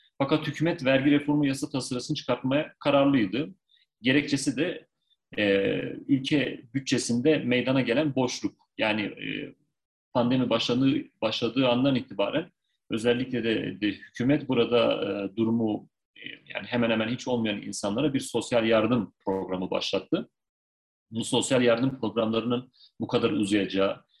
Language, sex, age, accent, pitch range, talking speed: Turkish, male, 40-59, native, 110-150 Hz, 120 wpm